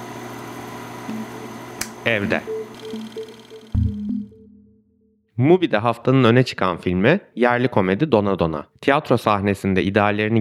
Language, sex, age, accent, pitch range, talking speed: Turkish, male, 30-49, native, 90-120 Hz, 75 wpm